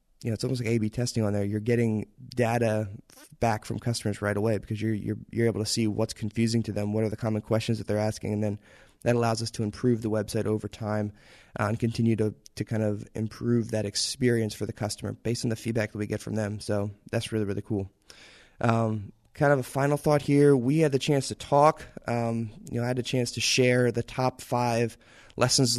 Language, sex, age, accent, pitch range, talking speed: English, male, 20-39, American, 110-120 Hz, 235 wpm